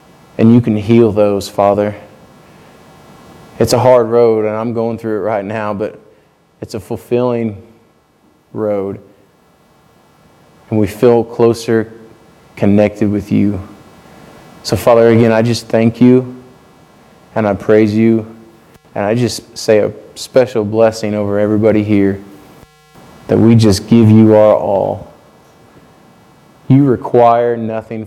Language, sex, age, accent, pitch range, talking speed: English, male, 20-39, American, 105-120 Hz, 130 wpm